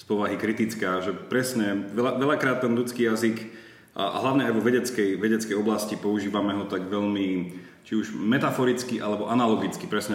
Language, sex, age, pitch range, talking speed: Slovak, male, 30-49, 95-115 Hz, 155 wpm